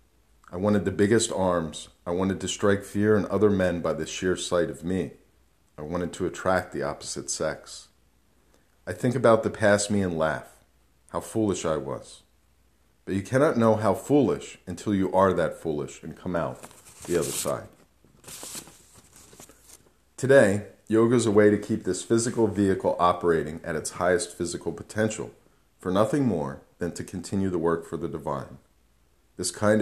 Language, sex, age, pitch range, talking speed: English, male, 40-59, 85-105 Hz, 170 wpm